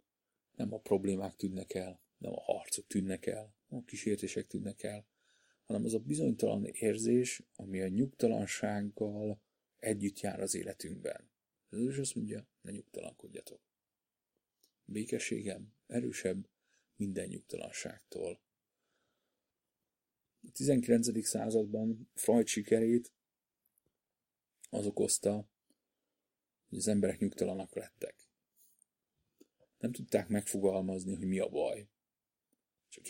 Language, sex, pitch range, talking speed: Hungarian, male, 100-115 Hz, 100 wpm